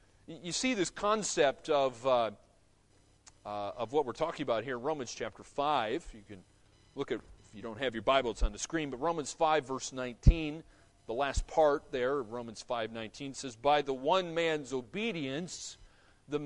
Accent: American